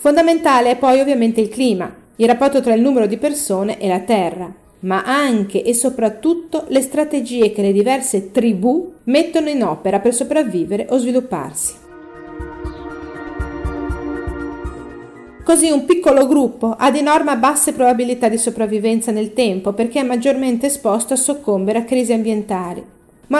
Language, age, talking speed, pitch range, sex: Italian, 40-59, 145 wpm, 220-275 Hz, female